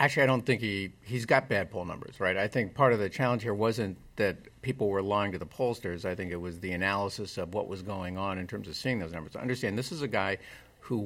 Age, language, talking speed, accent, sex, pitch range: 50-69, English, 265 wpm, American, male, 100-125 Hz